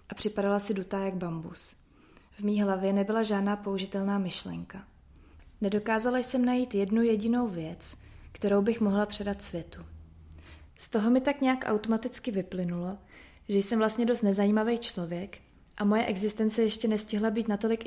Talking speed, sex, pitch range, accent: 150 wpm, female, 190-220 Hz, native